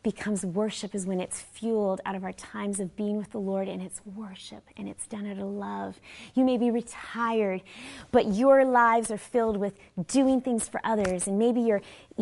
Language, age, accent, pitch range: English, 30-49, American, 175-225 Hz